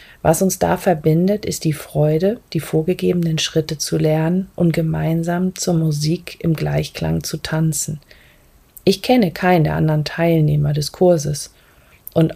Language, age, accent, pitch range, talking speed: German, 40-59, German, 150-180 Hz, 140 wpm